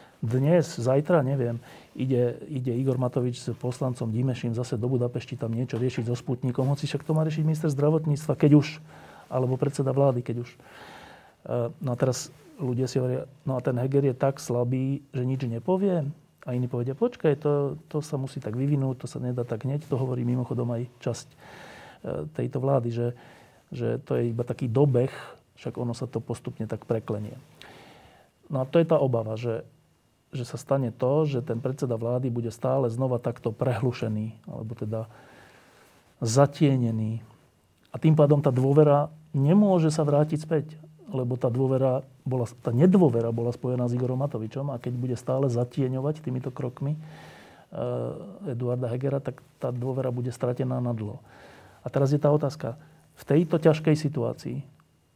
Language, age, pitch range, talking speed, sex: Slovak, 40-59, 120-145 Hz, 165 wpm, male